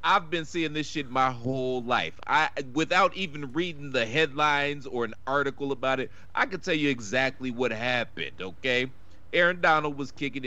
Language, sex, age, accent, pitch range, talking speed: English, male, 40-59, American, 120-165 Hz, 180 wpm